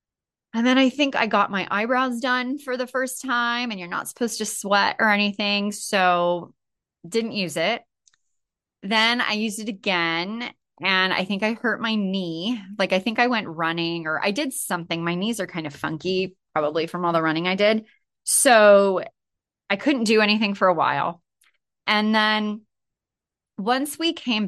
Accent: American